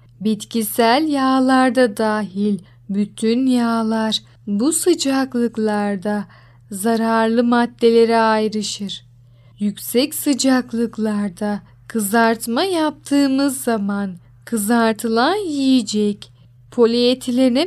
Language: Turkish